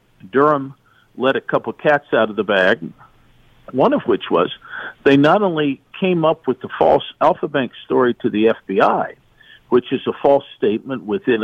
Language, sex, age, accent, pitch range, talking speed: English, male, 50-69, American, 110-155 Hz, 175 wpm